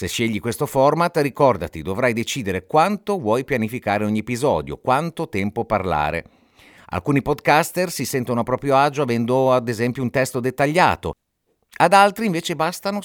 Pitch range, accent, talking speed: 90-140 Hz, native, 145 wpm